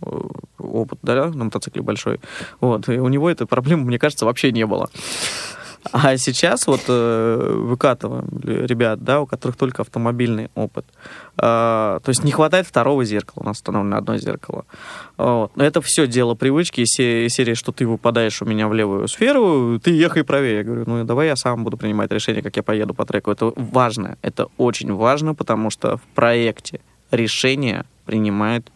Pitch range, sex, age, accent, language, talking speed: 115-135 Hz, male, 20-39, native, Russian, 175 wpm